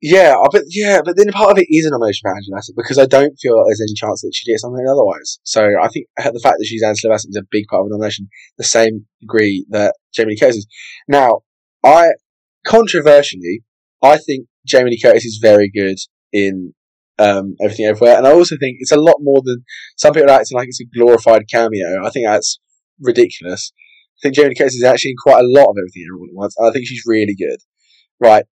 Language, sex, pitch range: English, male, 105-145 Hz